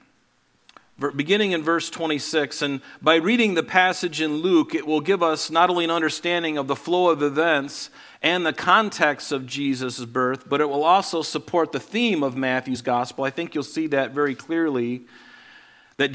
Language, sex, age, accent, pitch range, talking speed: English, male, 40-59, American, 135-170 Hz, 180 wpm